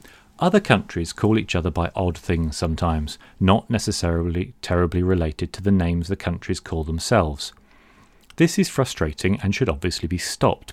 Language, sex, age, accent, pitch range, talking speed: English, male, 40-59, British, 85-110 Hz, 155 wpm